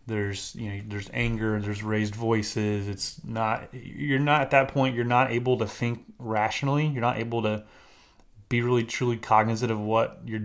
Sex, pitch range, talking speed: male, 110-125 Hz, 185 wpm